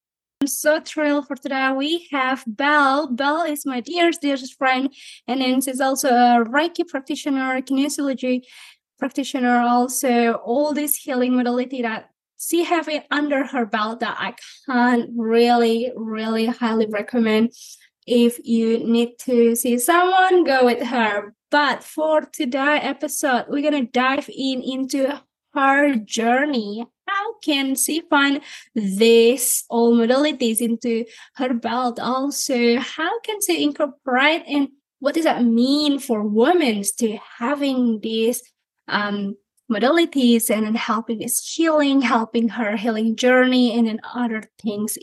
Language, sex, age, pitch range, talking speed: English, female, 20-39, 235-280 Hz, 135 wpm